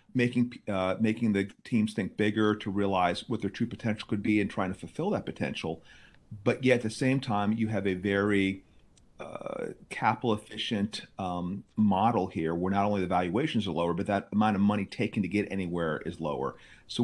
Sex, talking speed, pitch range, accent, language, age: male, 195 wpm, 85-105 Hz, American, English, 40-59